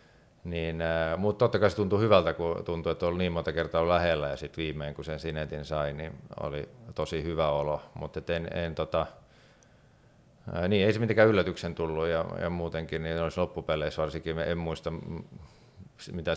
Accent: native